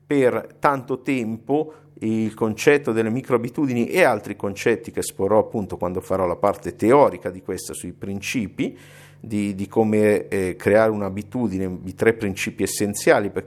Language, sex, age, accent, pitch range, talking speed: Italian, male, 50-69, native, 105-140 Hz, 150 wpm